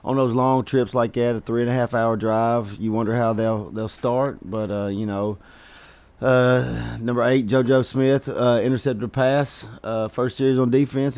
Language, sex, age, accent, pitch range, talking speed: English, male, 40-59, American, 110-130 Hz, 200 wpm